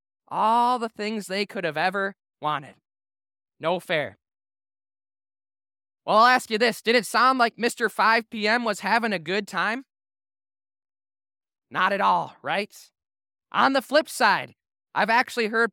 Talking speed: 145 wpm